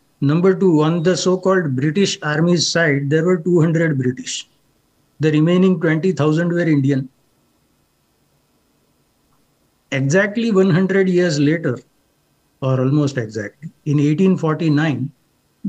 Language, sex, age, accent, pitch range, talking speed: English, male, 60-79, Indian, 145-190 Hz, 100 wpm